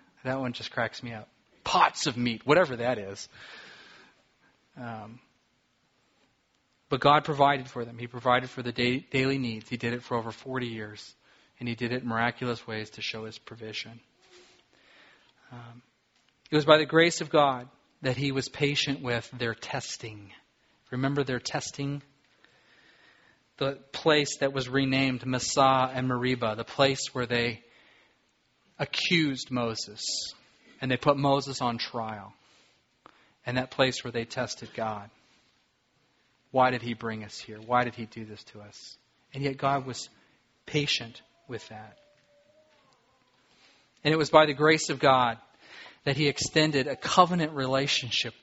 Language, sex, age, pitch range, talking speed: English, male, 40-59, 115-145 Hz, 150 wpm